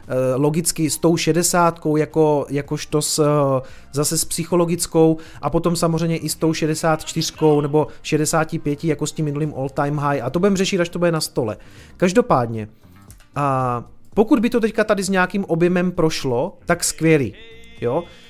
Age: 30-49